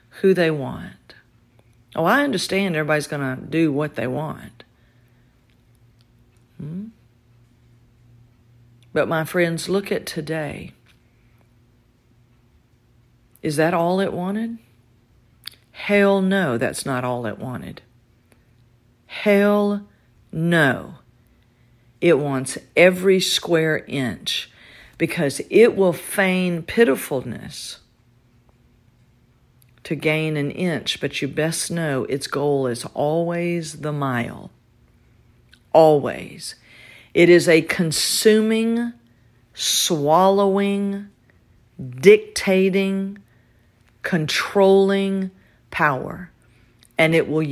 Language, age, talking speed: English, 50-69, 85 wpm